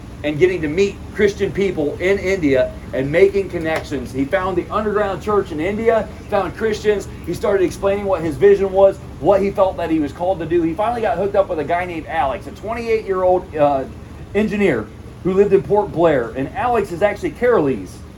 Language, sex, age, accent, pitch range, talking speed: English, male, 40-59, American, 155-205 Hz, 205 wpm